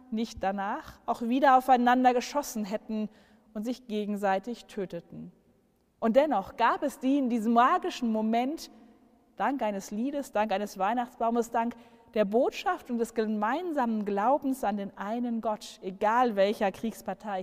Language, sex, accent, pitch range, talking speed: German, female, German, 200-245 Hz, 140 wpm